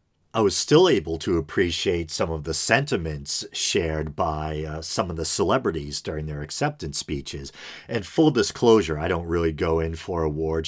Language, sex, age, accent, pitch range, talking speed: English, male, 40-59, American, 75-90 Hz, 175 wpm